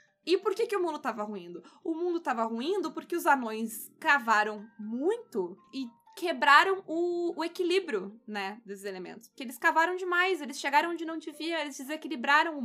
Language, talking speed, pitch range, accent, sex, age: Portuguese, 175 wpm, 235-330 Hz, Brazilian, female, 20-39